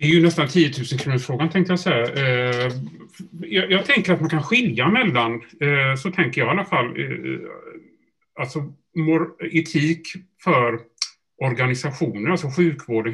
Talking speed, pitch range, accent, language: 130 wpm, 115-165 Hz, Norwegian, Swedish